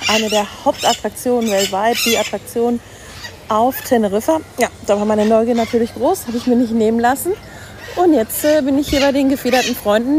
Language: German